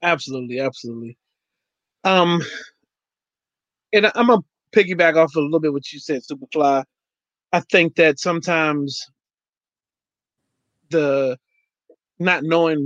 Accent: American